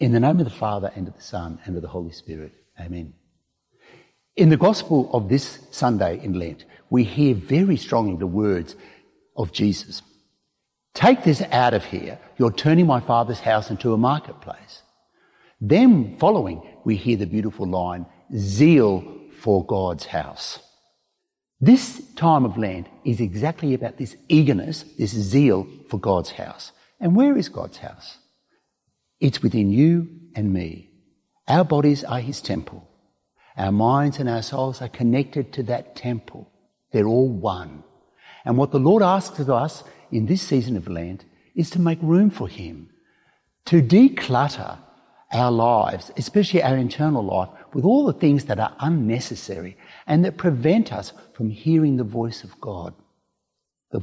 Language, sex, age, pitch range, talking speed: English, male, 60-79, 100-150 Hz, 160 wpm